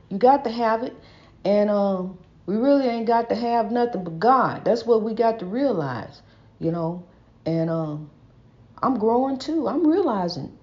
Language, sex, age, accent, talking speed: English, female, 60-79, American, 175 wpm